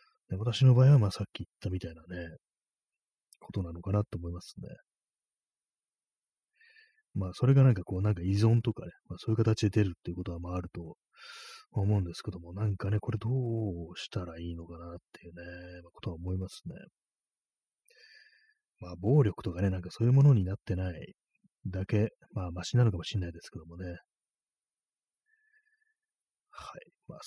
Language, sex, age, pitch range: Japanese, male, 30-49, 90-120 Hz